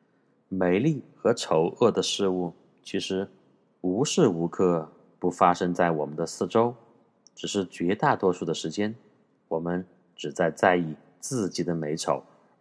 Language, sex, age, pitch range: Chinese, male, 30-49, 85-115 Hz